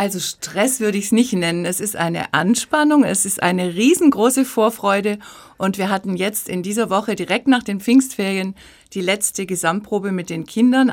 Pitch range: 185-220 Hz